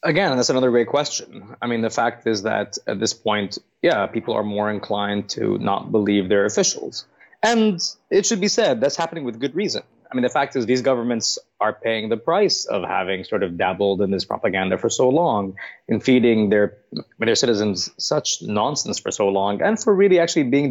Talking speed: 205 wpm